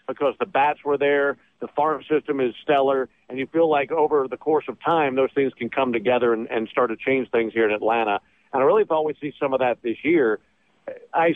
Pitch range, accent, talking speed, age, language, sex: 125-145 Hz, American, 240 wpm, 50-69, English, male